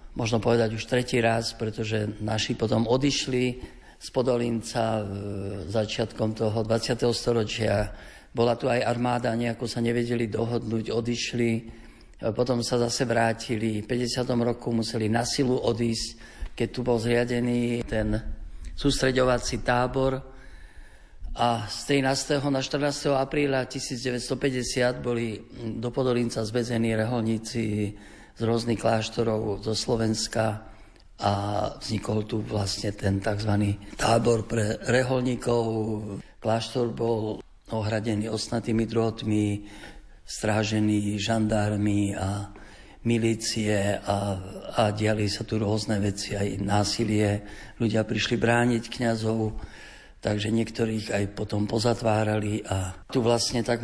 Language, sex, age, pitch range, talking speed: Slovak, male, 50-69, 105-120 Hz, 110 wpm